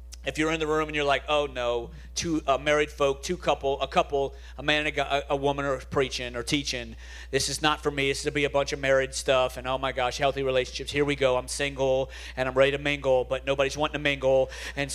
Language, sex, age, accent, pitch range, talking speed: English, male, 40-59, American, 120-145 Hz, 255 wpm